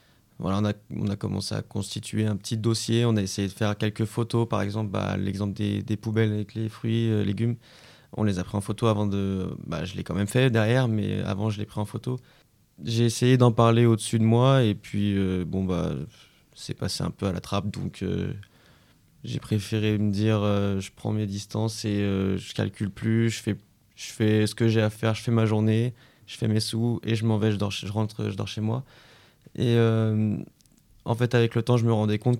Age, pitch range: 20-39, 100-115 Hz